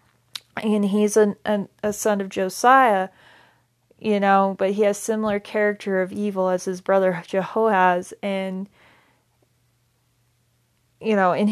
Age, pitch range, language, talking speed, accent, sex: 30-49, 185-210 Hz, English, 130 wpm, American, female